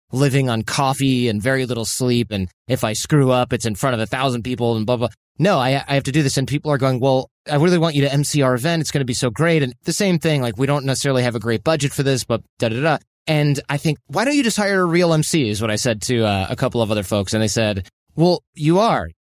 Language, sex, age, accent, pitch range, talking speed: English, male, 30-49, American, 120-155 Hz, 295 wpm